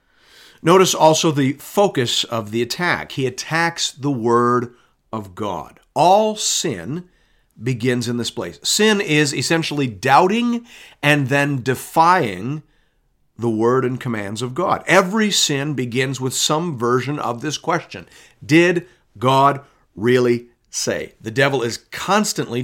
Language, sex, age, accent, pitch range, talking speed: English, male, 50-69, American, 130-180 Hz, 130 wpm